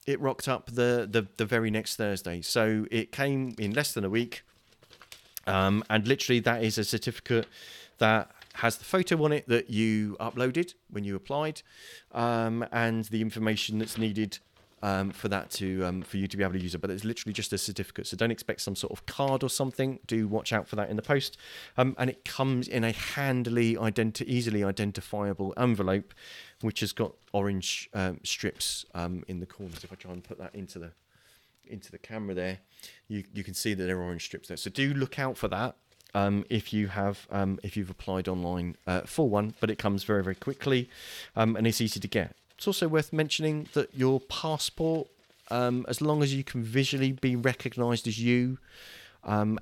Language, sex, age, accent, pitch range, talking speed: English, male, 30-49, British, 100-125 Hz, 205 wpm